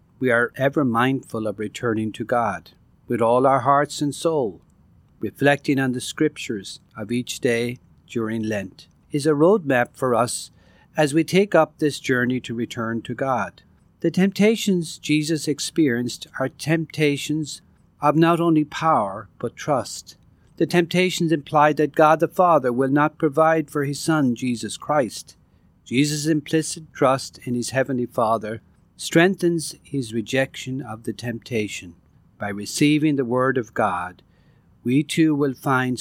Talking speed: 145 wpm